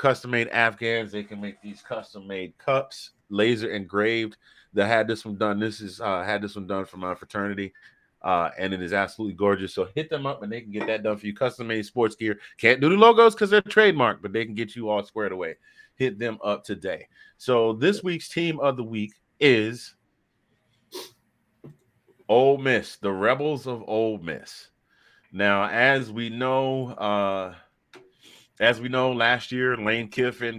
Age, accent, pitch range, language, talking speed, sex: 30-49, American, 105-125 Hz, English, 180 wpm, male